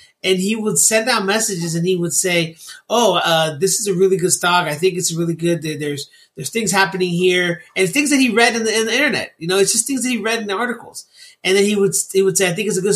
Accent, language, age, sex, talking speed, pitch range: American, English, 30-49, male, 285 wpm, 170-220 Hz